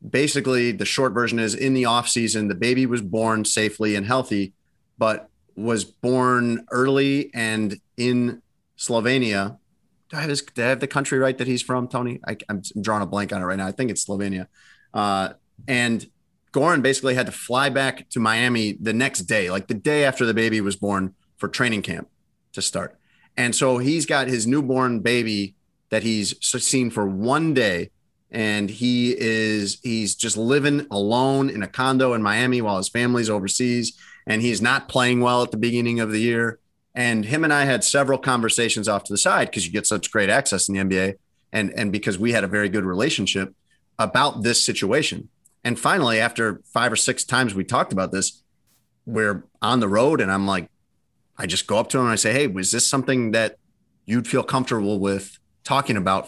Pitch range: 105-125 Hz